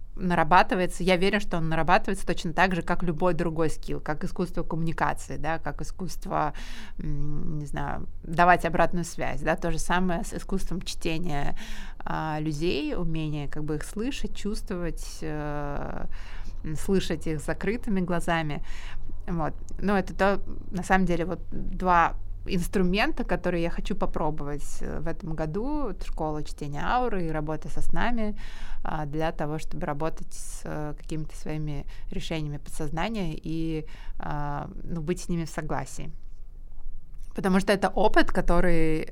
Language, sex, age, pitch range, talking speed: Russian, female, 20-39, 155-185 Hz, 135 wpm